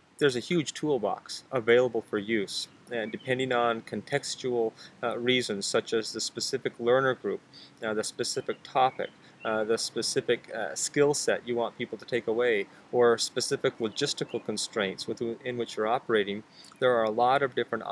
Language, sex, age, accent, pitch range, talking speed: English, male, 30-49, American, 110-130 Hz, 165 wpm